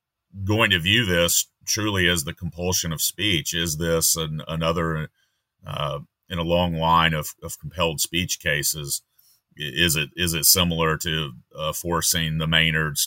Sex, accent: male, American